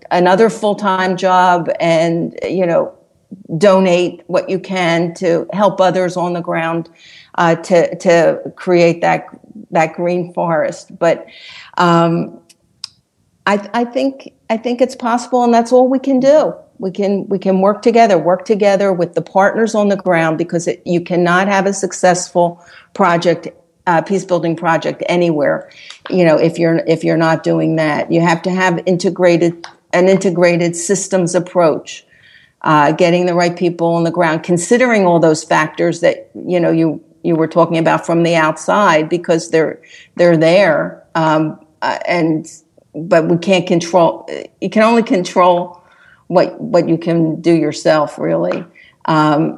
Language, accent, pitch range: English, American, 170-195 Hz